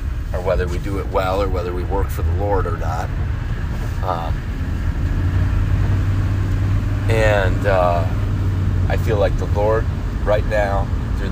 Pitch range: 90-105 Hz